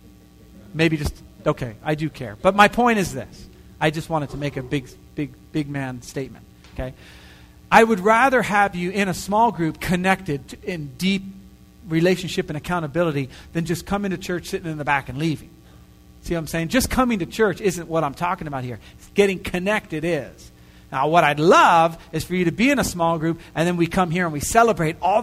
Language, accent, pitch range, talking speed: English, American, 140-190 Hz, 215 wpm